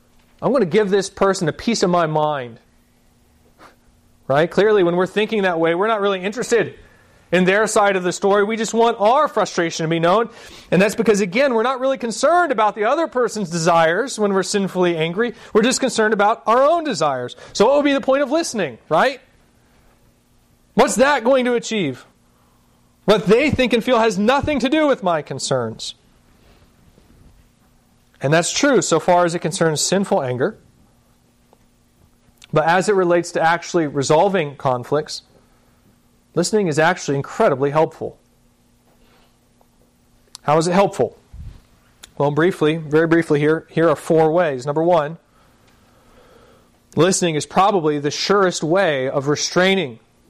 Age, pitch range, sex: 30-49, 145-210 Hz, male